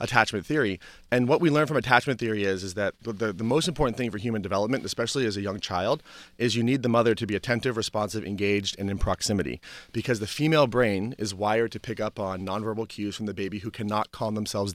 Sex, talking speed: male, 230 wpm